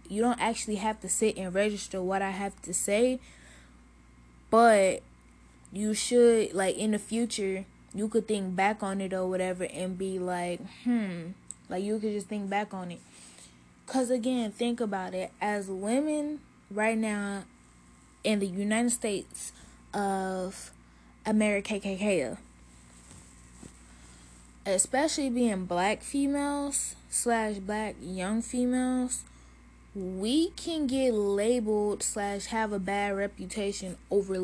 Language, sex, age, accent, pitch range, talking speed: English, female, 10-29, American, 180-210 Hz, 125 wpm